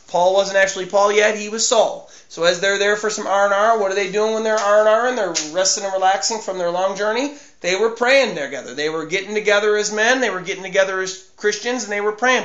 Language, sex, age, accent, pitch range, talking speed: English, male, 30-49, American, 190-235 Hz, 265 wpm